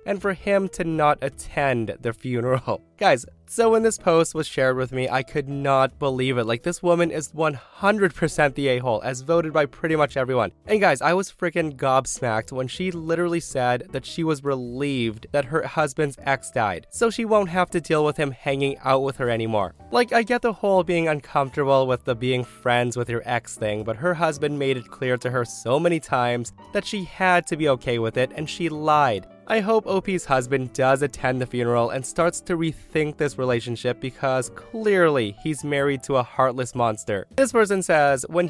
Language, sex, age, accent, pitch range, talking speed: English, male, 20-39, American, 125-170 Hz, 205 wpm